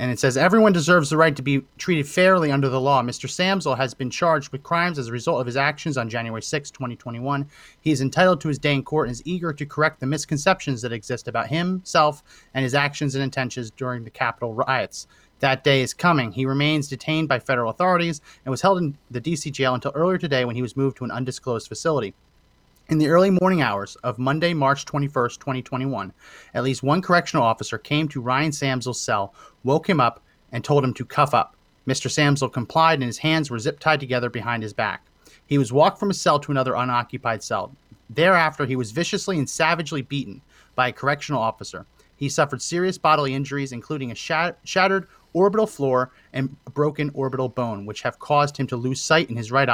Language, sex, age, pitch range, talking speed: English, male, 30-49, 125-155 Hz, 210 wpm